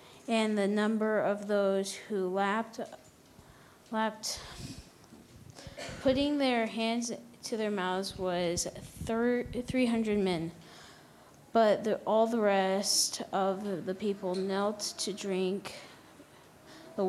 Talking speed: 100 wpm